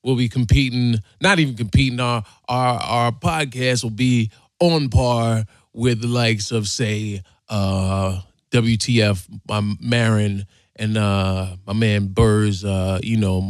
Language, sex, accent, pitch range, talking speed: English, male, American, 110-150 Hz, 145 wpm